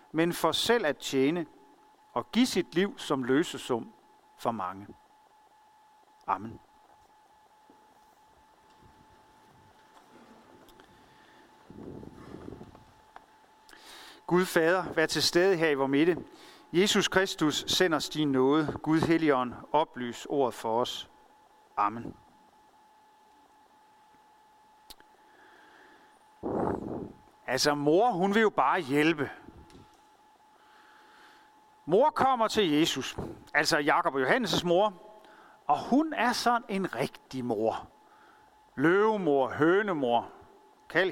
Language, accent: Danish, native